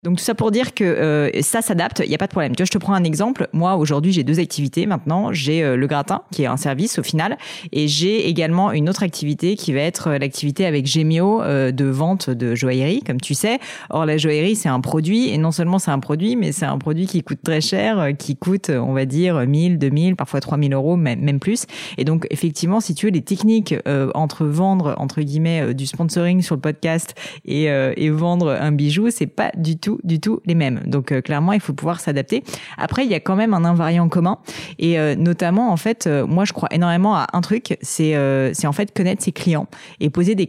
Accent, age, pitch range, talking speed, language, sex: French, 30-49, 150-185 Hz, 245 wpm, French, female